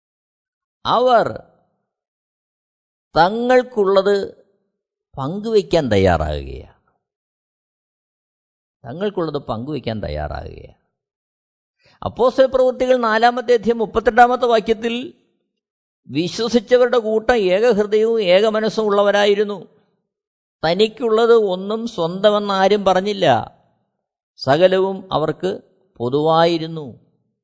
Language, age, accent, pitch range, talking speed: Malayalam, 50-69, native, 180-225 Hz, 55 wpm